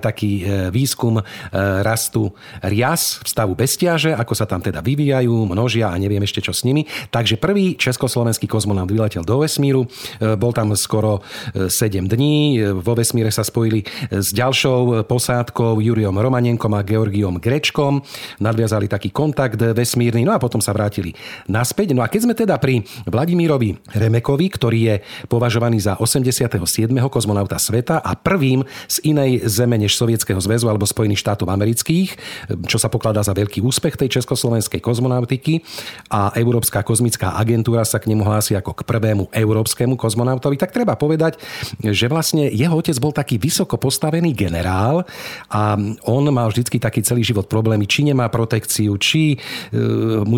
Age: 40-59